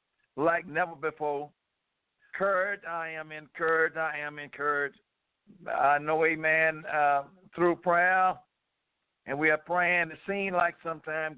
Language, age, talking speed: English, 60-79, 125 wpm